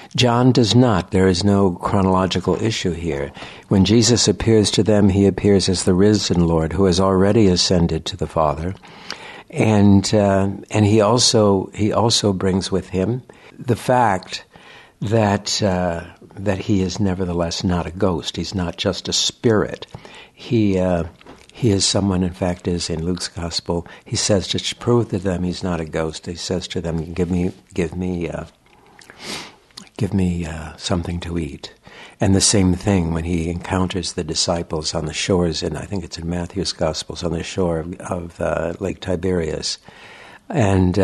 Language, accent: English, American